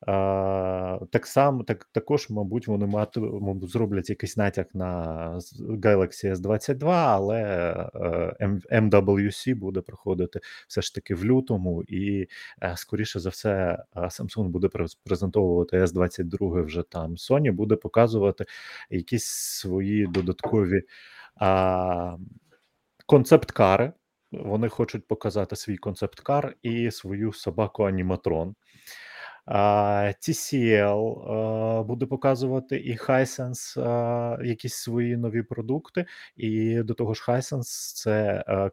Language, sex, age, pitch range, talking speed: Ukrainian, male, 30-49, 95-115 Hz, 115 wpm